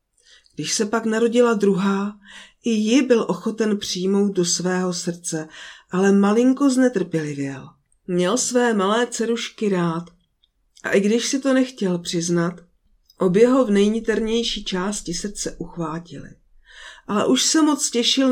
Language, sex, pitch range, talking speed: Czech, female, 175-240 Hz, 130 wpm